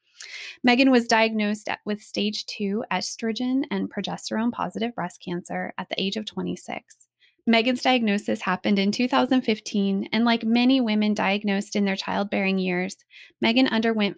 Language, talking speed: English, 135 wpm